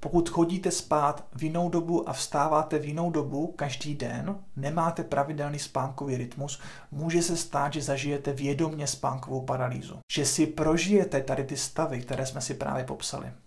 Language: Czech